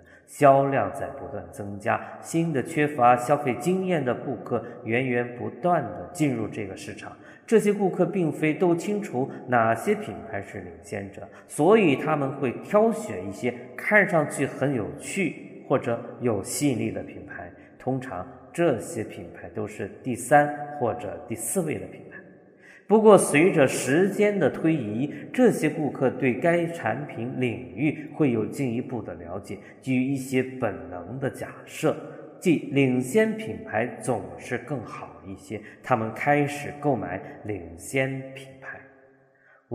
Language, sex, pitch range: Chinese, male, 110-150 Hz